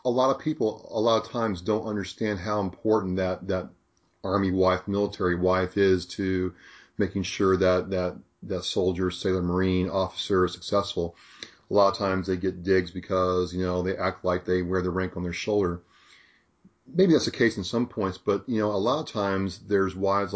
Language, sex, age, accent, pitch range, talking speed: English, male, 40-59, American, 90-105 Hz, 200 wpm